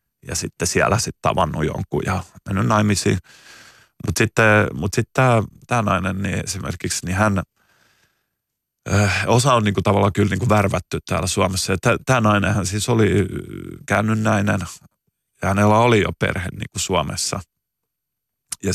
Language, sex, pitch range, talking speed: Finnish, male, 95-110 Hz, 140 wpm